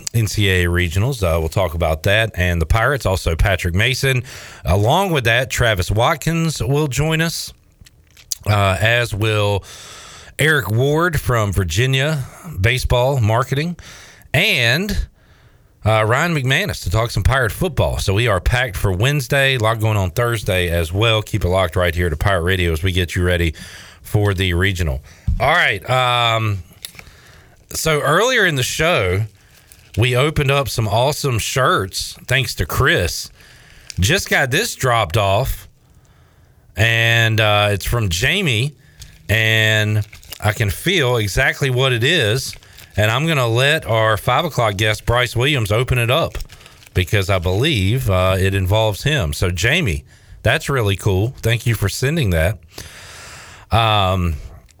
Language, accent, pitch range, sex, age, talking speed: English, American, 95-125 Hz, male, 40-59, 145 wpm